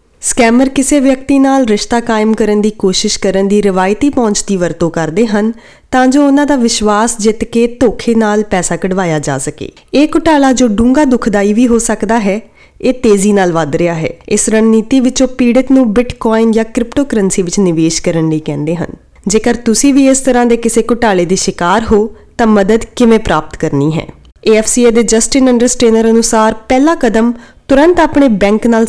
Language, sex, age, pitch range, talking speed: Punjabi, female, 20-39, 195-245 Hz, 160 wpm